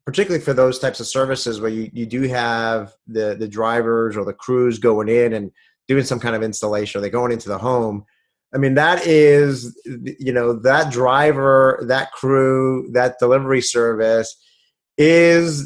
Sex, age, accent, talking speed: male, 30-49, American, 175 wpm